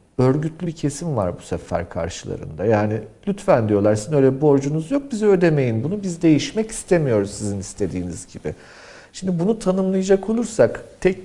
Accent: native